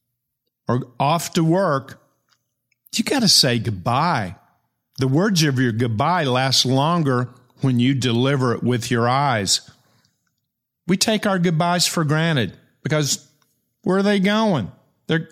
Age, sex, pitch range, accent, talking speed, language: 50-69, male, 130-165 Hz, American, 135 wpm, English